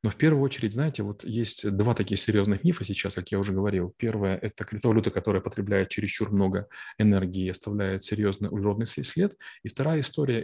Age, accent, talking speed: 20-39, native, 180 wpm